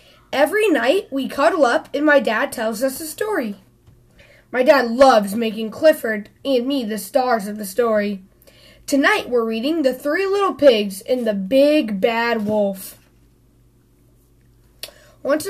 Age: 10-29